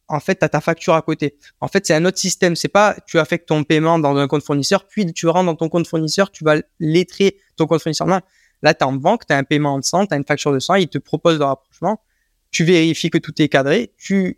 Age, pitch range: 20-39, 145-180 Hz